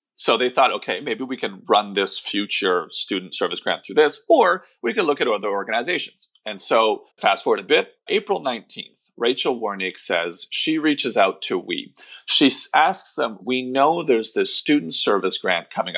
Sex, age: male, 30-49